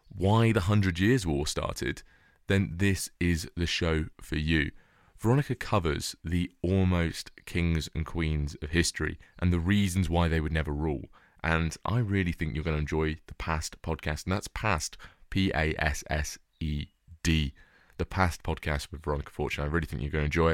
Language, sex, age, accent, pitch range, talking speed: English, male, 20-39, British, 75-90 Hz, 170 wpm